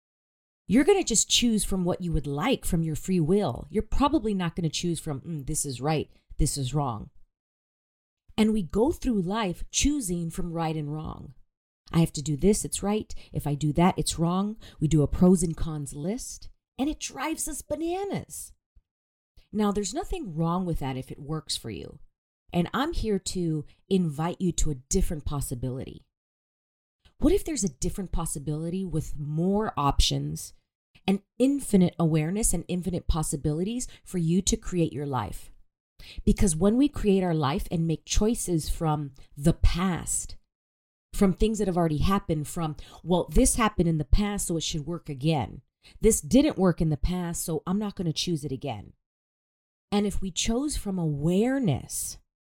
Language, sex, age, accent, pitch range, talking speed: English, female, 40-59, American, 150-200 Hz, 175 wpm